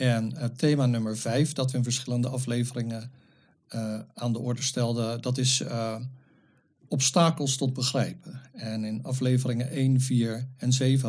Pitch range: 115-135 Hz